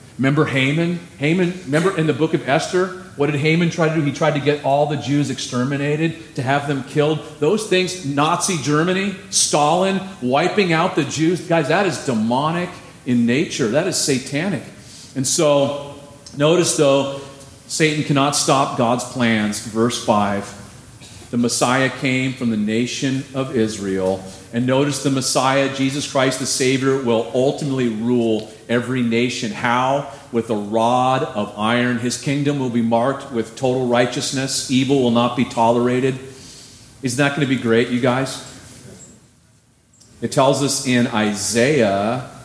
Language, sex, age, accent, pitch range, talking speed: English, male, 40-59, American, 120-145 Hz, 155 wpm